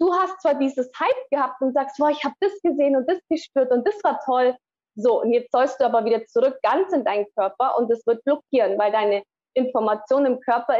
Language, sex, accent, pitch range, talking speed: German, female, German, 235-295 Hz, 230 wpm